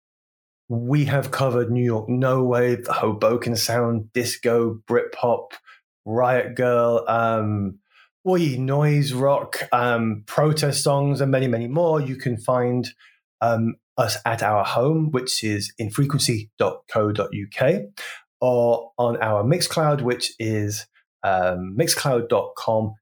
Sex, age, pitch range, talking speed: male, 20-39, 110-140 Hz, 115 wpm